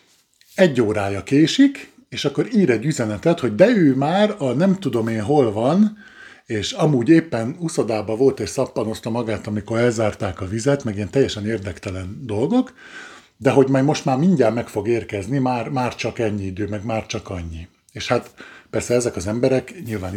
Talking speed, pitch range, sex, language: 180 wpm, 105-135 Hz, male, Hungarian